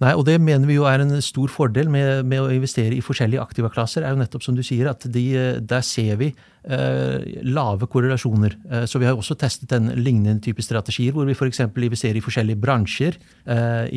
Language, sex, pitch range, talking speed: English, male, 115-130 Hz, 220 wpm